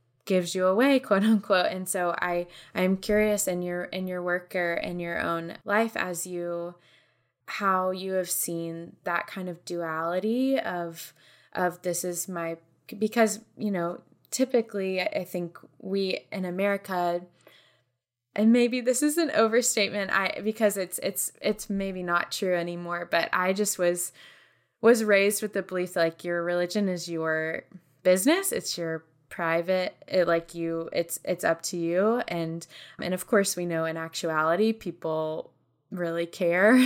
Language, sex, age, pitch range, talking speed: English, female, 20-39, 170-195 Hz, 155 wpm